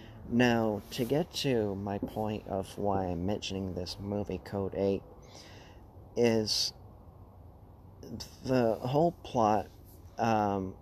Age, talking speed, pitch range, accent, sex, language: 40-59, 105 wpm, 95-110 Hz, American, male, English